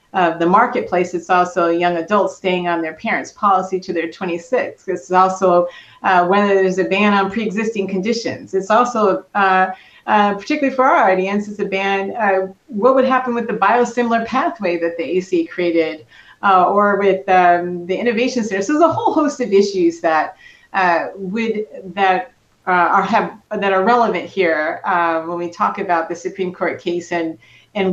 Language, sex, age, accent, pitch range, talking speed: English, female, 30-49, American, 175-215 Hz, 185 wpm